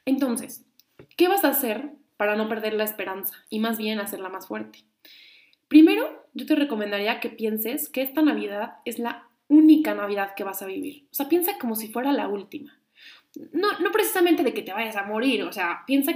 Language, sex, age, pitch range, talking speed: Spanish, female, 20-39, 220-295 Hz, 195 wpm